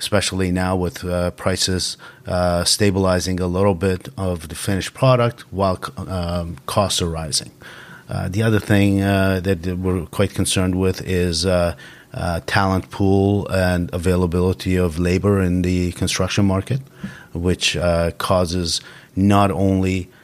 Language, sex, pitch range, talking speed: English, male, 85-100 Hz, 140 wpm